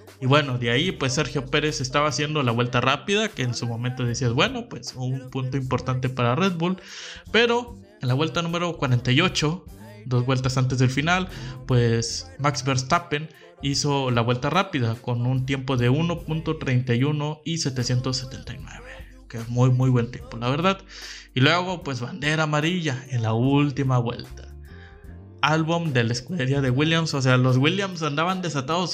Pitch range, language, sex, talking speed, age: 125-155 Hz, Spanish, male, 160 wpm, 20-39